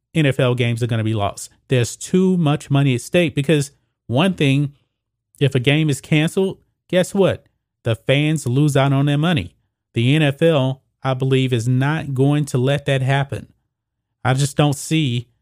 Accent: American